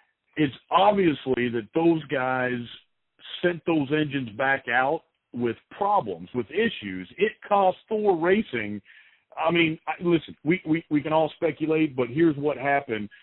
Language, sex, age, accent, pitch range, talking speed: English, male, 50-69, American, 130-170 Hz, 140 wpm